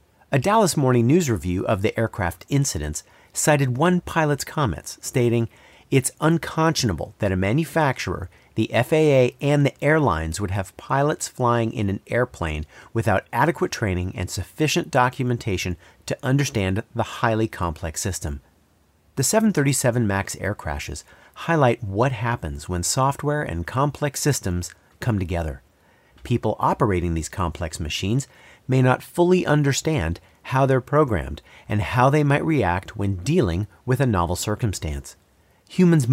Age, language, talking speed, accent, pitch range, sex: 40-59, English, 135 wpm, American, 95-145 Hz, male